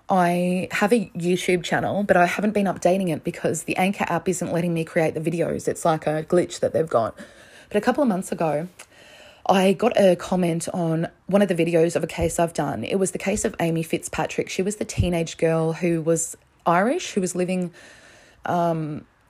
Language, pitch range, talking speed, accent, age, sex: English, 165-190 Hz, 210 wpm, Australian, 20-39, female